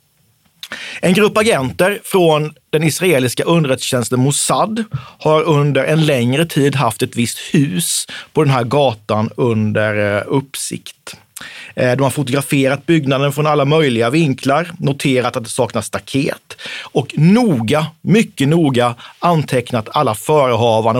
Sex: male